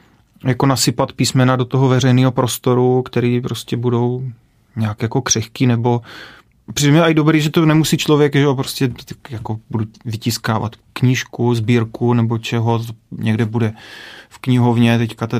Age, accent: 30-49, native